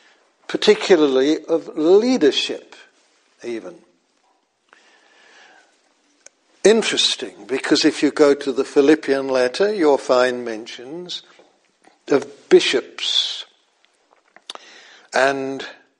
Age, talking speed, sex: 60-79, 70 wpm, male